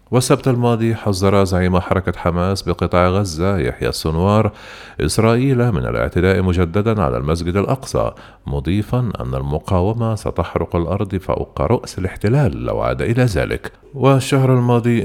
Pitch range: 80-110 Hz